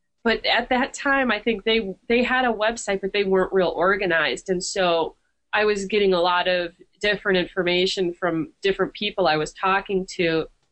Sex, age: female, 30-49